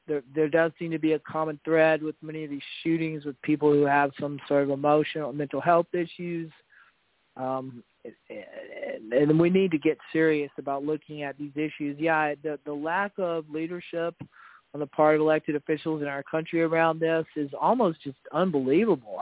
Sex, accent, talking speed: male, American, 185 wpm